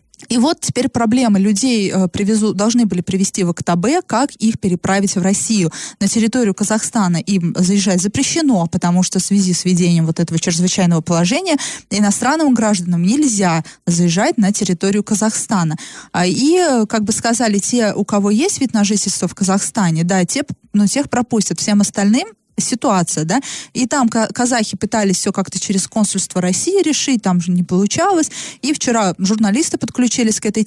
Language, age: Russian, 20-39